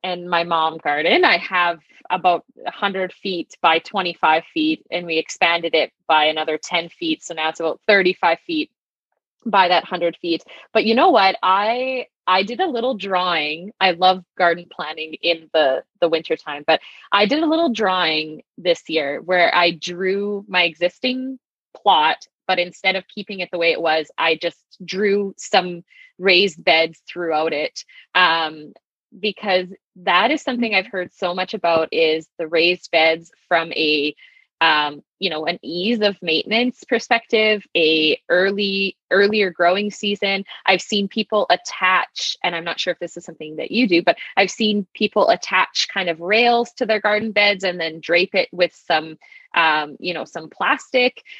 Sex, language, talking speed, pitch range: female, English, 170 wpm, 170-210 Hz